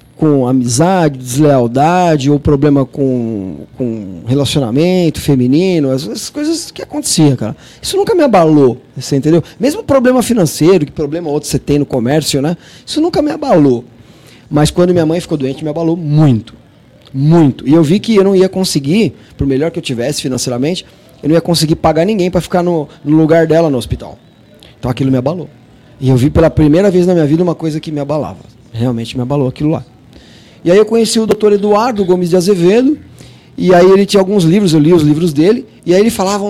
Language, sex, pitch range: Portuguese, male, 135-185 Hz